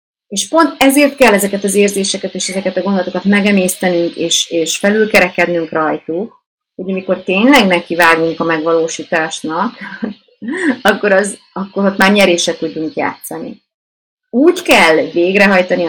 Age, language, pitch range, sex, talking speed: 30-49, Hungarian, 170-220 Hz, female, 125 wpm